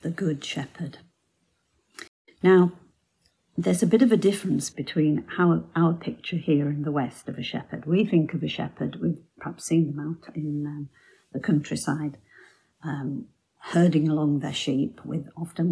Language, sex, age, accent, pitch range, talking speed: English, female, 50-69, British, 150-180 Hz, 165 wpm